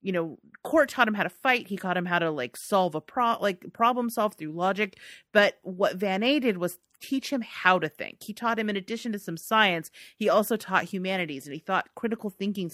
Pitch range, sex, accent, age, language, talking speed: 165-210 Hz, female, American, 30-49, English, 235 wpm